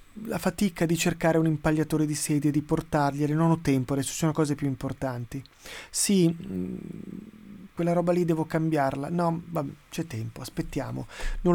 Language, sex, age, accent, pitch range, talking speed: Italian, male, 30-49, native, 140-175 Hz, 155 wpm